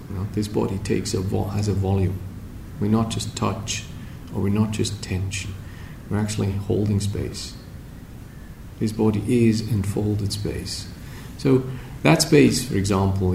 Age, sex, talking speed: 40-59, male, 150 wpm